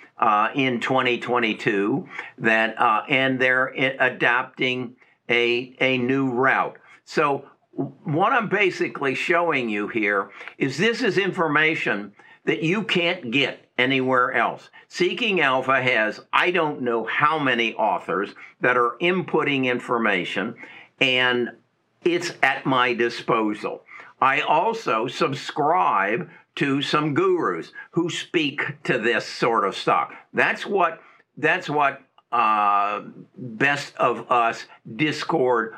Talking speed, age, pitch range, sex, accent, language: 115 wpm, 60-79, 125-170 Hz, male, American, English